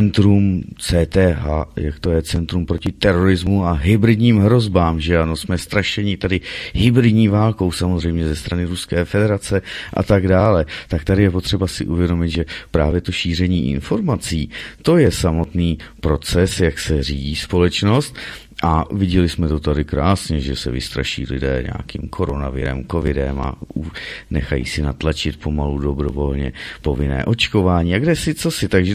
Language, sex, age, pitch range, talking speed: Czech, male, 30-49, 75-95 Hz, 150 wpm